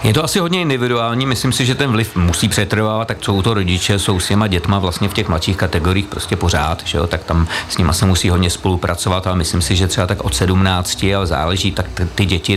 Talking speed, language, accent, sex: 240 wpm, Czech, native, male